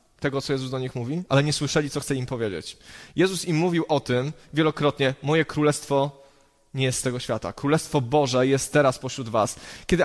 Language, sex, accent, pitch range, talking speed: Polish, male, native, 130-155 Hz, 195 wpm